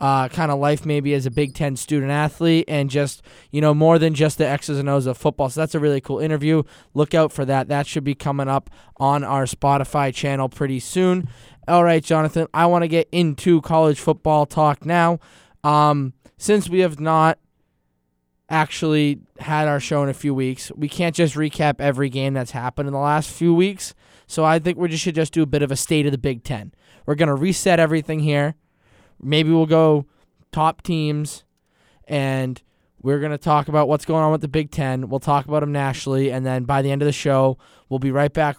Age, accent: 20-39, American